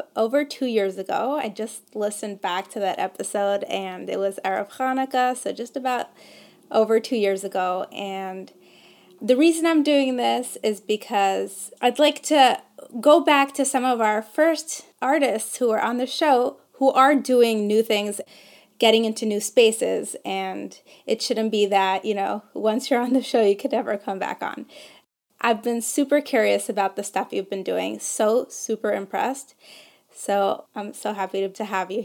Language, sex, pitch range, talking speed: English, female, 205-255 Hz, 180 wpm